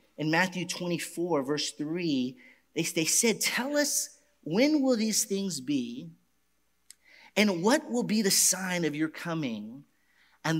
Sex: male